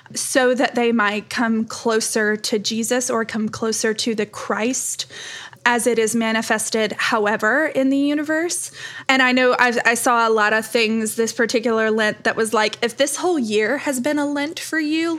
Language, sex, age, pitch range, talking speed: English, female, 20-39, 220-260 Hz, 185 wpm